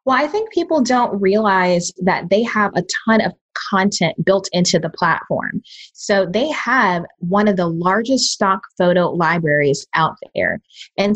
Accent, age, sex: American, 20-39, female